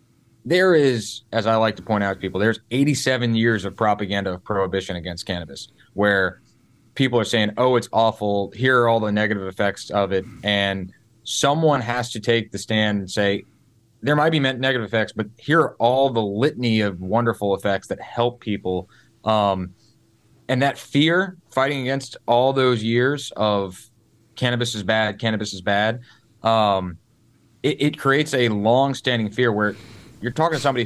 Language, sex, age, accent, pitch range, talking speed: English, male, 30-49, American, 105-120 Hz, 175 wpm